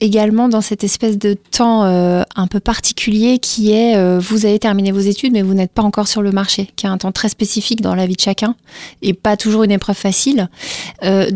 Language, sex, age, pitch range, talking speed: French, female, 20-39, 190-220 Hz, 245 wpm